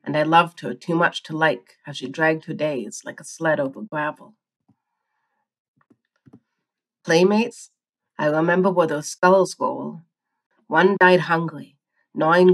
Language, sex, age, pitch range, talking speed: English, female, 30-49, 155-180 Hz, 140 wpm